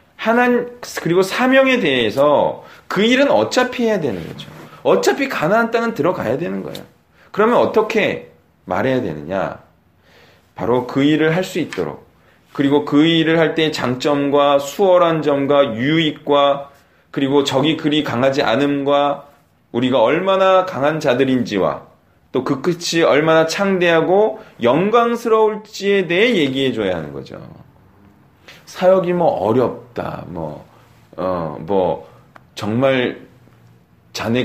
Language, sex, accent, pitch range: Korean, male, native, 135-200 Hz